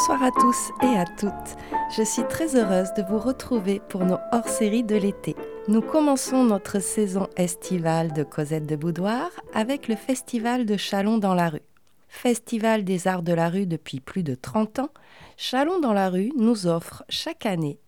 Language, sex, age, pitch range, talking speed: French, female, 30-49, 185-235 Hz, 185 wpm